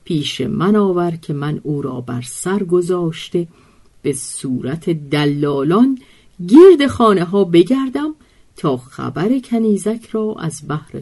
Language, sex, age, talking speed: Persian, female, 50-69, 125 wpm